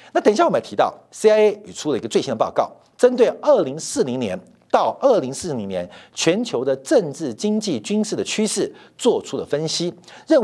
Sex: male